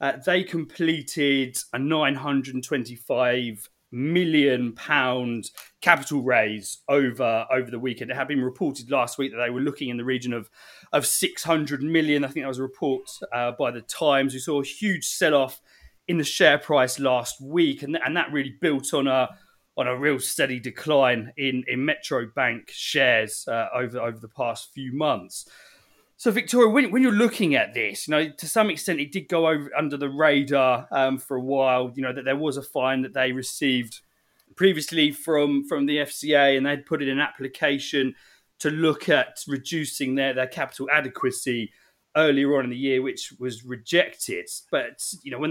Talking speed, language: 185 wpm, English